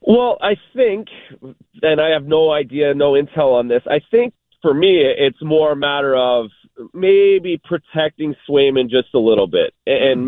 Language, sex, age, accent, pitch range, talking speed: English, male, 30-49, American, 130-160 Hz, 170 wpm